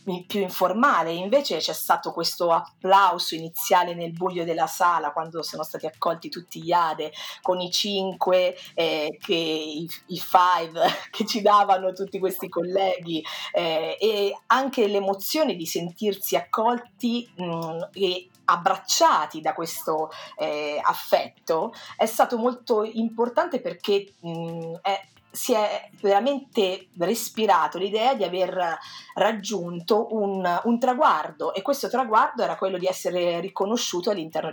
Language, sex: Italian, female